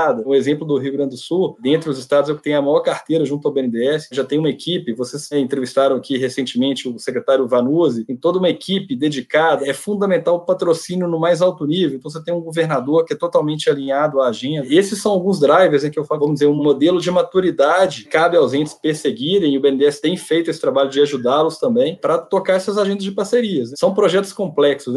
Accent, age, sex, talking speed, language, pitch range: Brazilian, 20-39, male, 225 wpm, Portuguese, 140-175 Hz